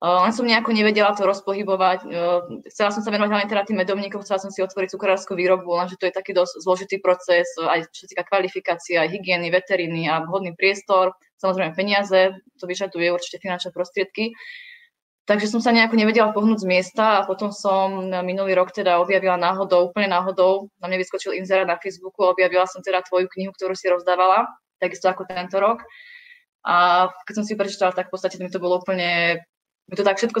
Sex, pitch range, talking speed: female, 180-200 Hz, 190 wpm